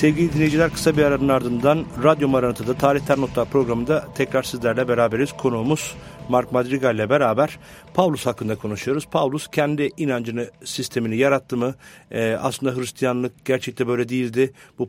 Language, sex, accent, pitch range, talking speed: English, male, Turkish, 120-155 Hz, 140 wpm